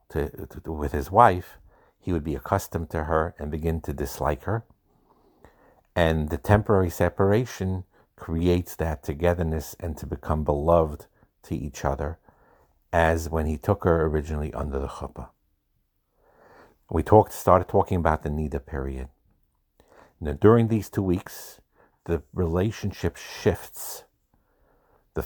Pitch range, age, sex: 75-95 Hz, 50-69, male